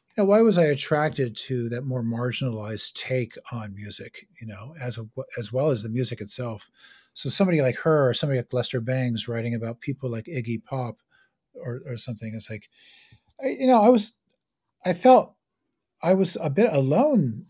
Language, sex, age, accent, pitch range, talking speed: English, male, 40-59, American, 120-165 Hz, 185 wpm